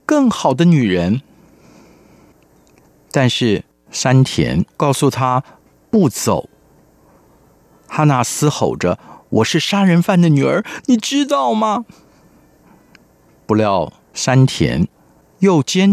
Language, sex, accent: Chinese, male, native